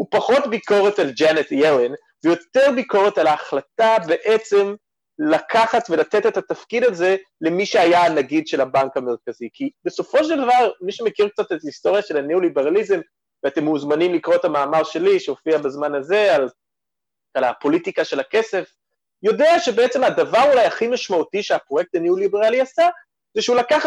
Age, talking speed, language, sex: 30-49, 150 wpm, Hebrew, male